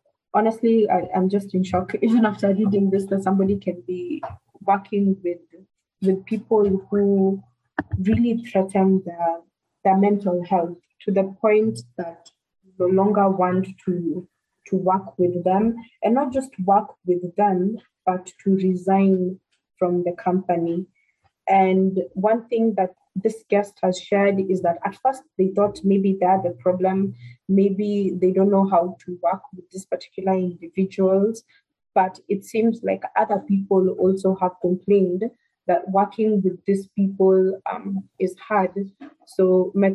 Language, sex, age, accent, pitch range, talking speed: English, female, 20-39, South African, 185-205 Hz, 145 wpm